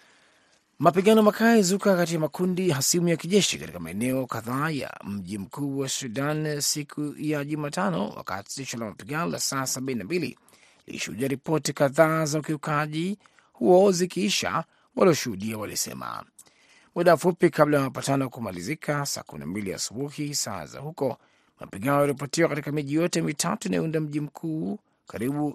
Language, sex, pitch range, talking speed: Swahili, male, 135-170 Hz, 130 wpm